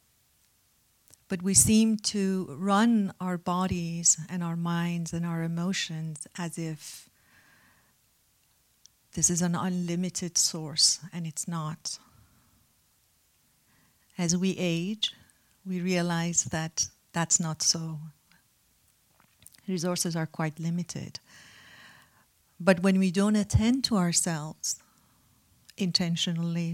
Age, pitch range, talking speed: 50-69, 160-185 Hz, 100 wpm